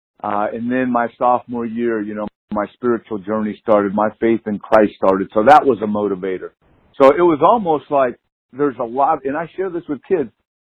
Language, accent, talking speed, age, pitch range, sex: English, American, 205 wpm, 50-69, 110-145 Hz, male